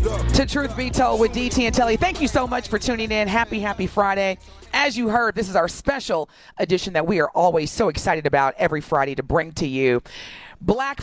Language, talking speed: English, 220 wpm